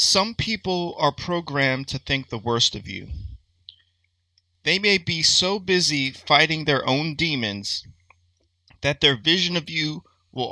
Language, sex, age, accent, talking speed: English, male, 30-49, American, 145 wpm